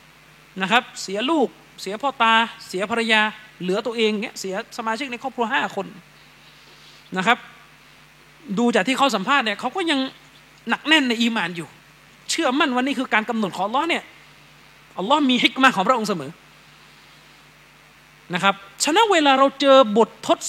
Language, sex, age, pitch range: Thai, male, 30-49, 190-265 Hz